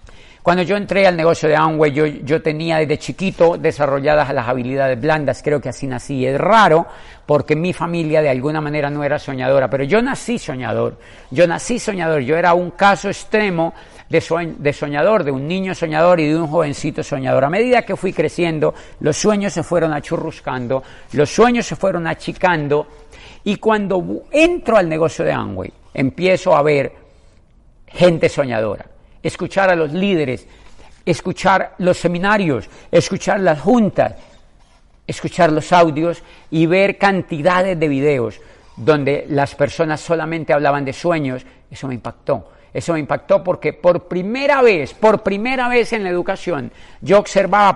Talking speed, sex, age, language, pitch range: 155 wpm, male, 50-69, Spanish, 145-185 Hz